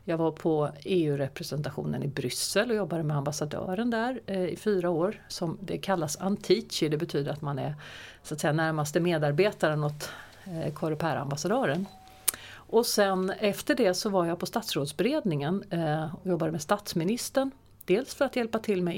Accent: native